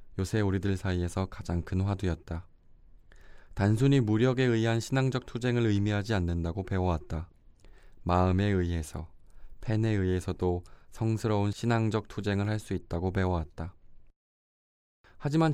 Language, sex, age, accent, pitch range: Korean, male, 20-39, native, 90-105 Hz